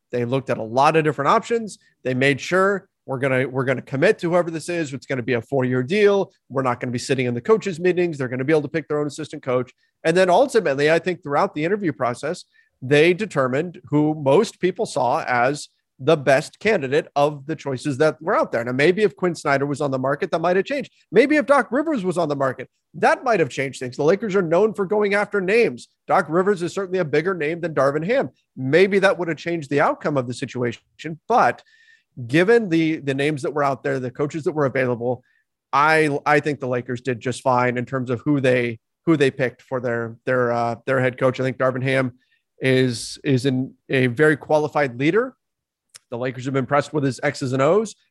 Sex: male